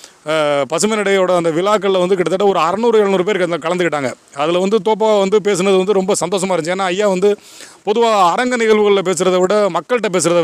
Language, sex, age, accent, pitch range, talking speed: English, male, 30-49, Indian, 170-210 Hz, 155 wpm